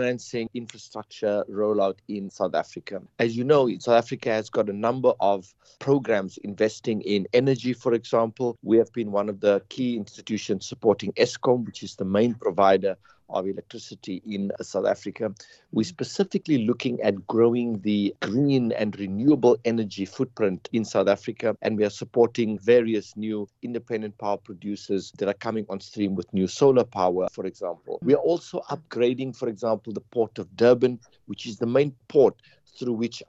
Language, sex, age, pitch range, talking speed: English, male, 50-69, 100-120 Hz, 170 wpm